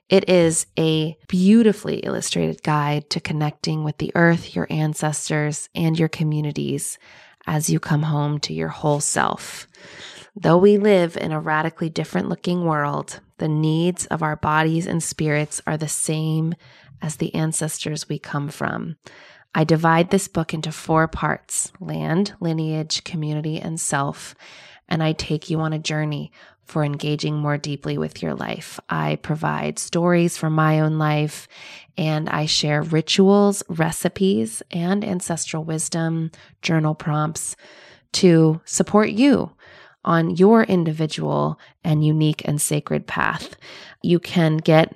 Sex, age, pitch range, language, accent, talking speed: female, 20-39, 150-180 Hz, English, American, 140 wpm